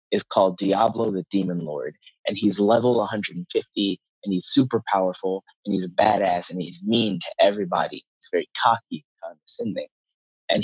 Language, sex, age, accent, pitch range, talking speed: English, male, 20-39, American, 100-115 Hz, 165 wpm